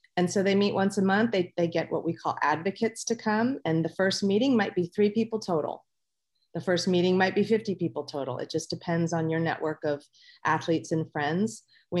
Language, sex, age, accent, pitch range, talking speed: English, female, 30-49, American, 160-195 Hz, 220 wpm